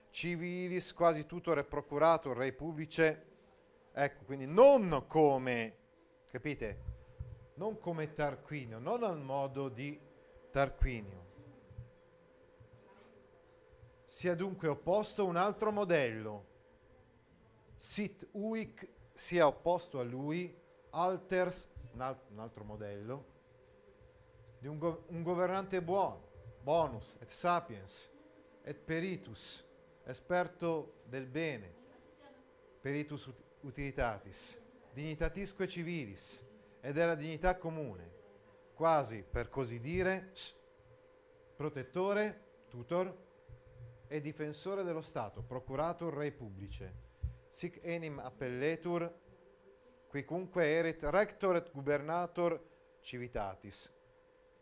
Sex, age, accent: male, 40-59, native